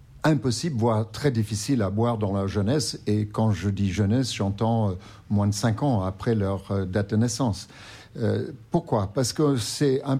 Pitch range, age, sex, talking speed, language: 105-130 Hz, 50-69, male, 175 wpm, French